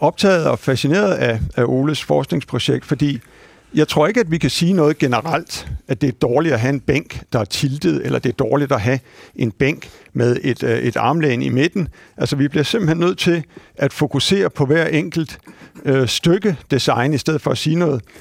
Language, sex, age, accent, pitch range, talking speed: Danish, male, 60-79, native, 130-165 Hz, 200 wpm